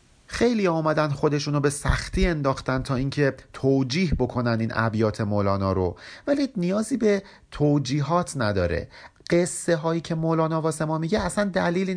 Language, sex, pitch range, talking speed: Persian, male, 105-170 Hz, 140 wpm